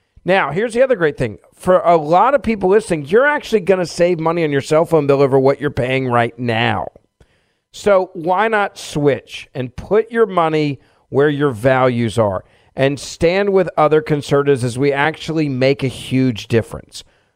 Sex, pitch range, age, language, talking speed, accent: male, 135-180 Hz, 40-59, English, 185 wpm, American